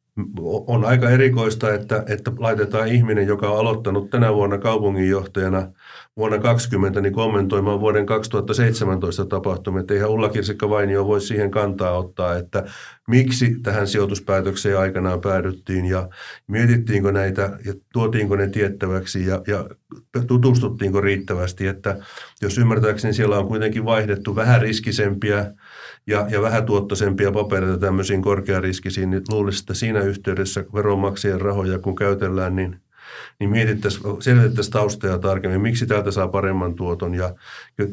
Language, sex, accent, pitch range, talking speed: Finnish, male, native, 100-110 Hz, 130 wpm